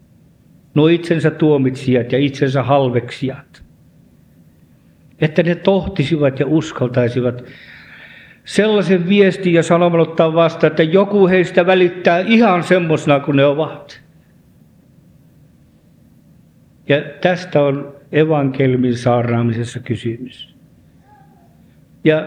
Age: 50-69